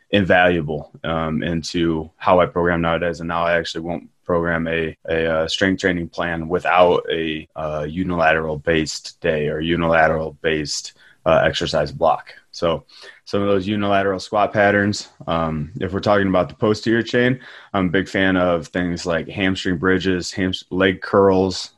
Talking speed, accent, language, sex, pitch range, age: 160 wpm, American, English, male, 80-95 Hz, 20-39